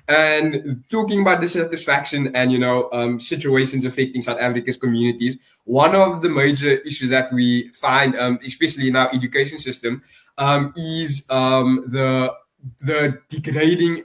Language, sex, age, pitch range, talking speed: English, male, 20-39, 130-160 Hz, 140 wpm